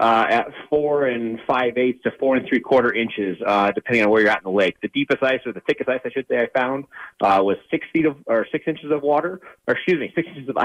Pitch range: 110-145 Hz